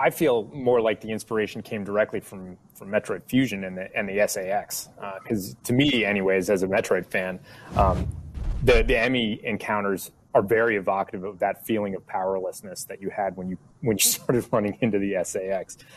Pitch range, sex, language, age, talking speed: 95-120 Hz, male, English, 30-49, 190 wpm